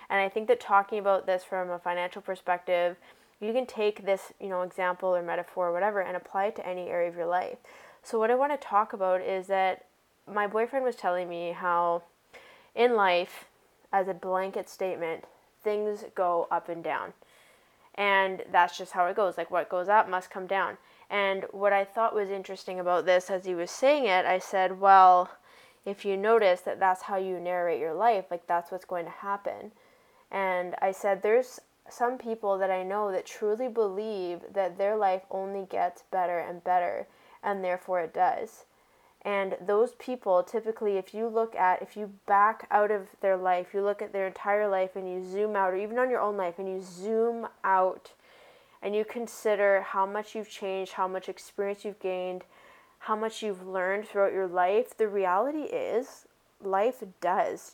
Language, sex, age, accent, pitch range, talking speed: English, female, 10-29, American, 185-215 Hz, 190 wpm